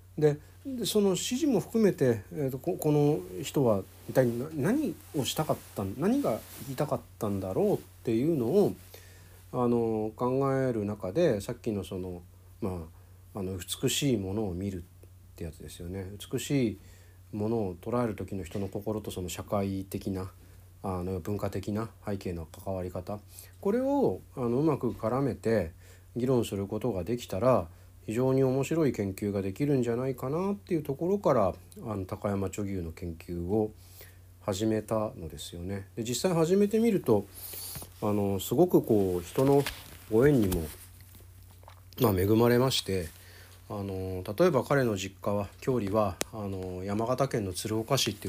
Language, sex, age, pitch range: Japanese, male, 40-59, 95-125 Hz